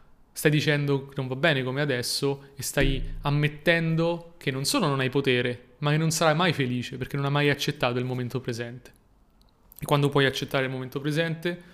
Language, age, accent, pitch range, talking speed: Italian, 30-49, native, 135-155 Hz, 195 wpm